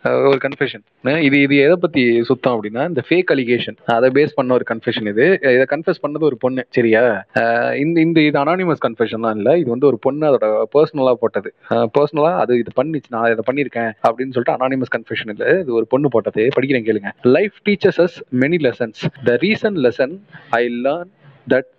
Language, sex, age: Tamil, male, 30-49